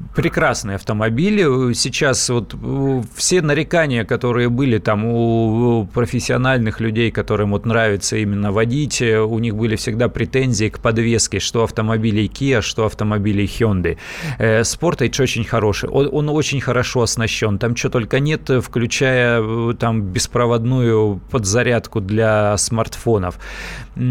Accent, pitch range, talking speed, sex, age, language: native, 110-130 Hz, 115 wpm, male, 20-39, Russian